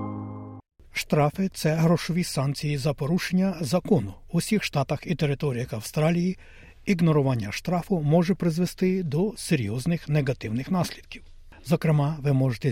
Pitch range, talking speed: 135-175 Hz, 120 wpm